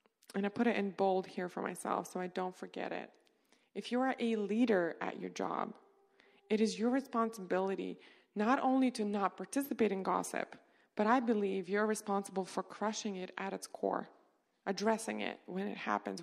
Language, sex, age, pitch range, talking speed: English, female, 20-39, 195-235 Hz, 180 wpm